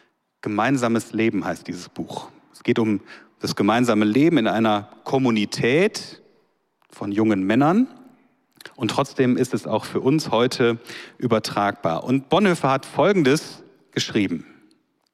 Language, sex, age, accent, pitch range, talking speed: German, male, 40-59, German, 115-155 Hz, 125 wpm